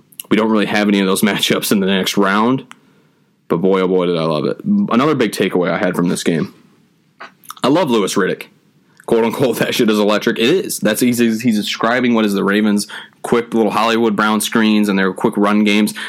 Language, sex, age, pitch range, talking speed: English, male, 20-39, 100-115 Hz, 215 wpm